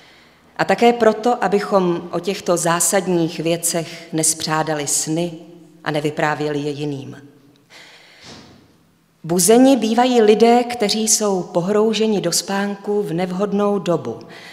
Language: Czech